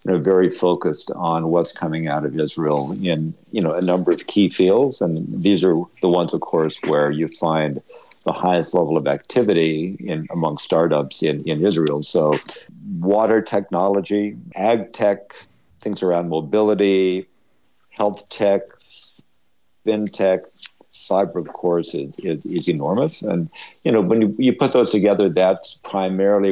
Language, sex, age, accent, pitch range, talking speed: English, male, 60-79, American, 85-105 Hz, 155 wpm